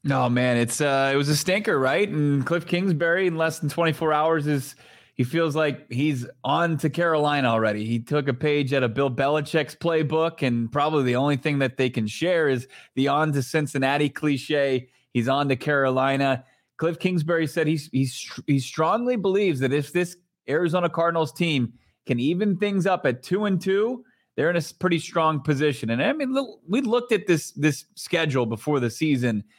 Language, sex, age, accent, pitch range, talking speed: English, male, 20-39, American, 135-170 Hz, 195 wpm